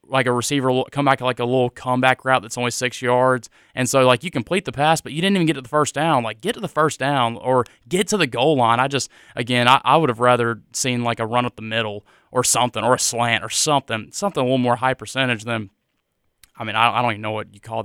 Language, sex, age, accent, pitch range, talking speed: English, male, 20-39, American, 115-135 Hz, 275 wpm